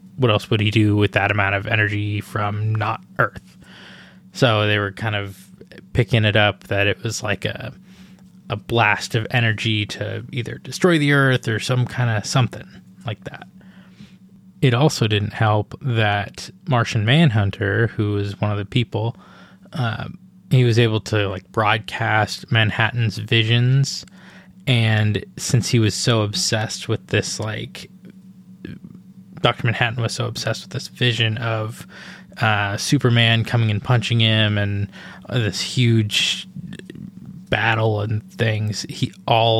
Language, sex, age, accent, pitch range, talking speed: English, male, 20-39, American, 105-145 Hz, 145 wpm